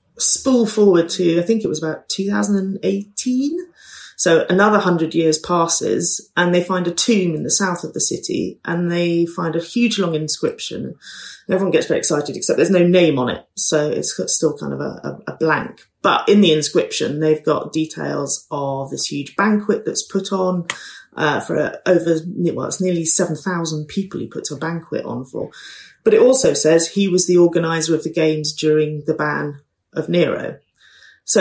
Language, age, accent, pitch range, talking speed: English, 30-49, British, 155-200 Hz, 180 wpm